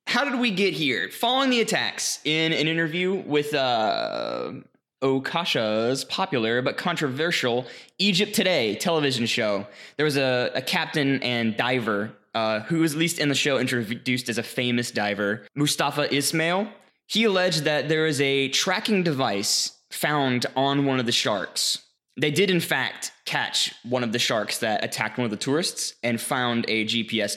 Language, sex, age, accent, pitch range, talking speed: English, male, 20-39, American, 120-175 Hz, 165 wpm